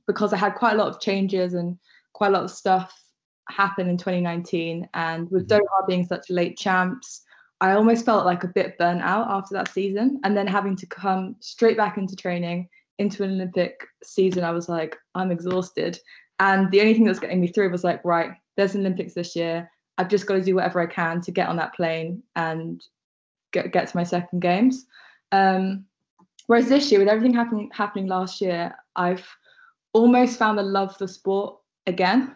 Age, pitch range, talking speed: 20-39, 175-200 Hz, 200 wpm